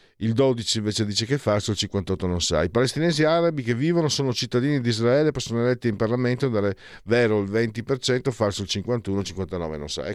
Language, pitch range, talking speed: Italian, 95-135 Hz, 215 wpm